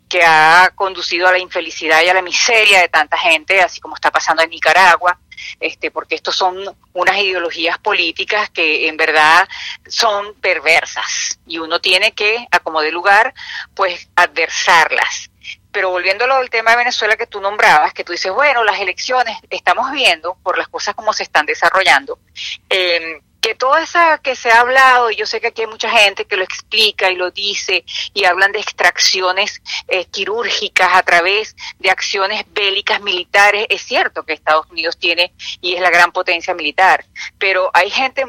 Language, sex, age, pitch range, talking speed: English, female, 40-59, 175-240 Hz, 175 wpm